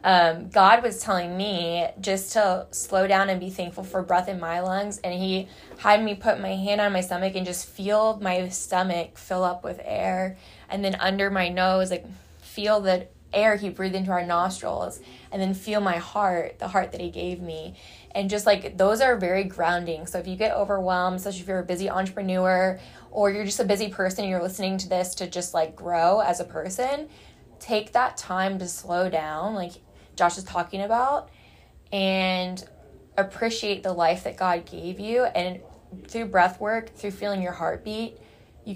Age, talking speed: 10-29, 190 wpm